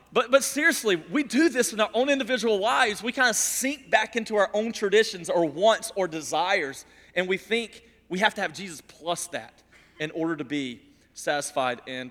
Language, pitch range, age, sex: English, 165-235 Hz, 30-49, male